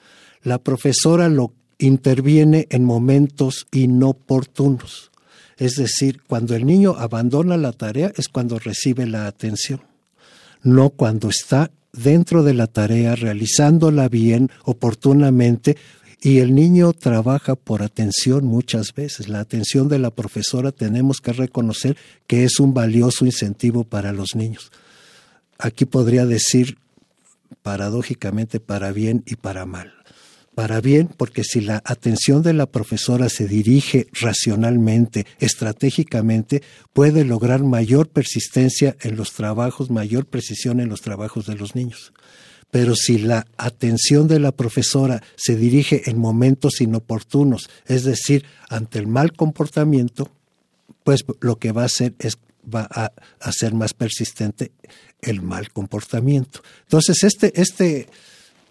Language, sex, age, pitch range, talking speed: Spanish, male, 50-69, 115-140 Hz, 130 wpm